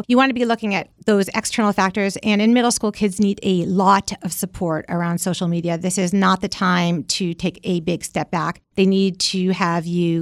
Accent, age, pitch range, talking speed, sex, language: American, 40-59, 180-215 Hz, 225 wpm, female, English